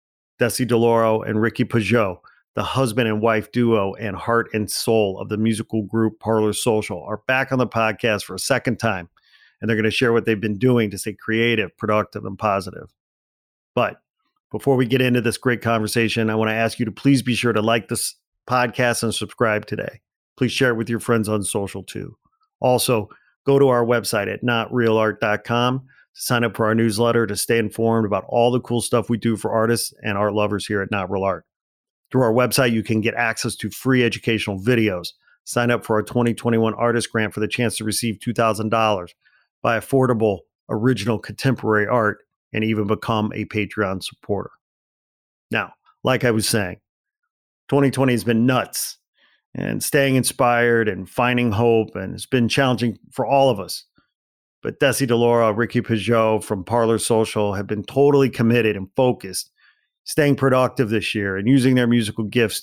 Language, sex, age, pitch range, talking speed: English, male, 40-59, 105-125 Hz, 180 wpm